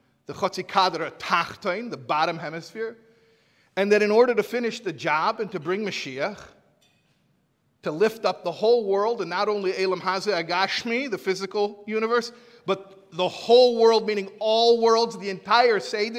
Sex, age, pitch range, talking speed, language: male, 50-69, 150-225 Hz, 155 wpm, English